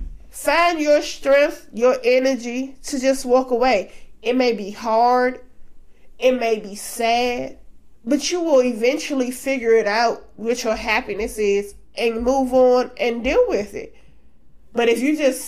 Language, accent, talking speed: English, American, 150 wpm